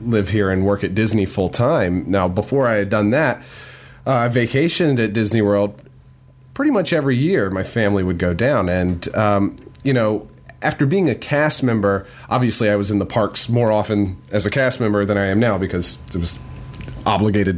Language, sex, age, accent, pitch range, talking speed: English, male, 30-49, American, 100-130 Hz, 195 wpm